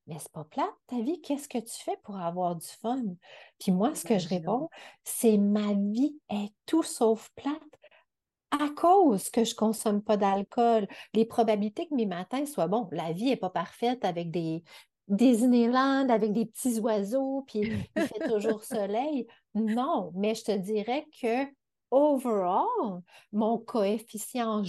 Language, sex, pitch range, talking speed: French, female, 195-260 Hz, 165 wpm